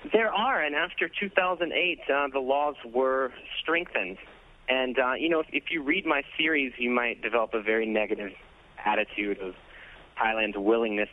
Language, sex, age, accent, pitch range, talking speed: English, male, 30-49, American, 100-125 Hz, 160 wpm